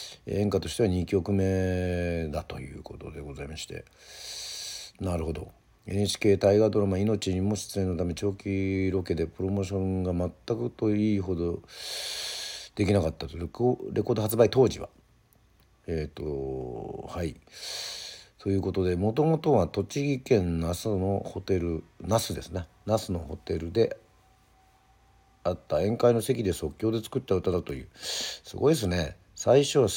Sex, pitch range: male, 90-115 Hz